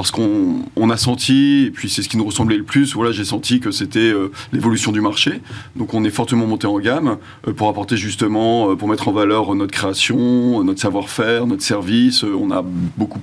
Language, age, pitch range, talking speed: French, 30-49, 105-125 Hz, 220 wpm